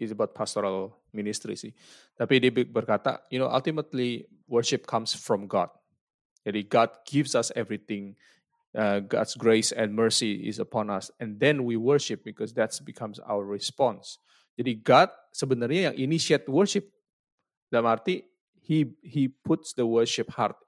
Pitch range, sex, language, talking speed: 115-150 Hz, male, Indonesian, 150 wpm